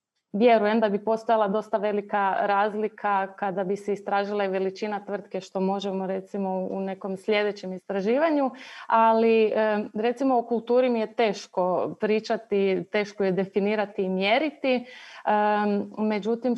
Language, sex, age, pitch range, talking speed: Croatian, female, 30-49, 200-225 Hz, 125 wpm